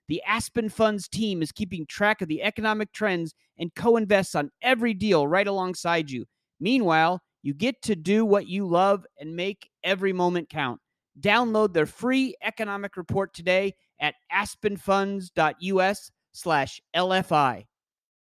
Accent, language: American, English